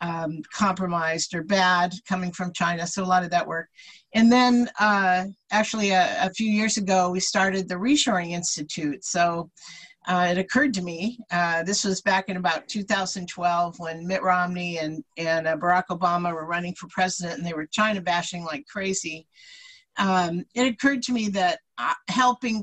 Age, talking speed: 50-69, 175 wpm